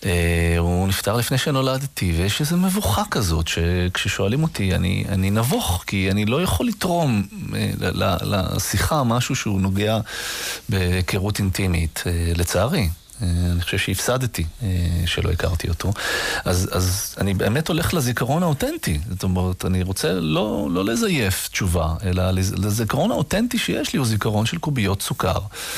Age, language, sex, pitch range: 30-49, Italian, male, 90-115 Hz